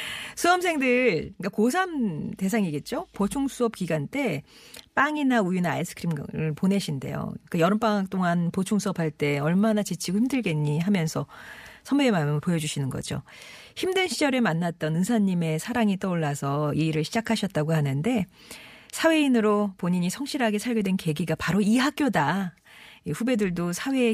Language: Korean